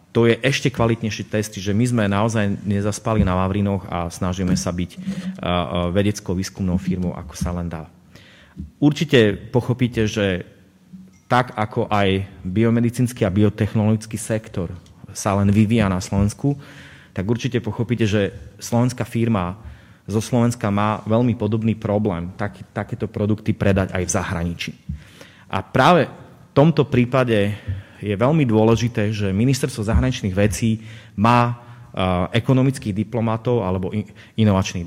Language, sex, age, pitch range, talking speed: Slovak, male, 30-49, 100-120 Hz, 125 wpm